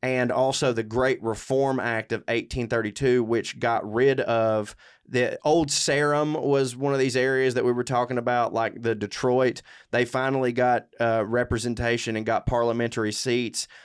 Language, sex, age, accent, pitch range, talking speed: English, male, 20-39, American, 110-125 Hz, 160 wpm